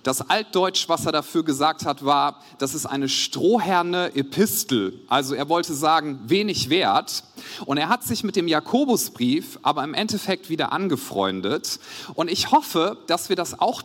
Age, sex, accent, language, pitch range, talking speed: 40-59, male, German, German, 145-220 Hz, 165 wpm